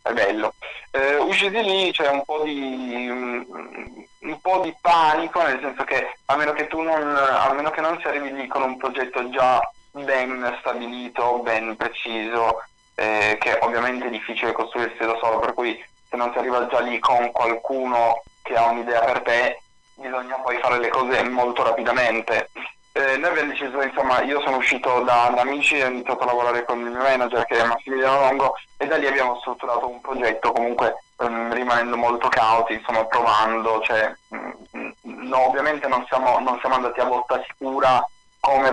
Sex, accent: male, native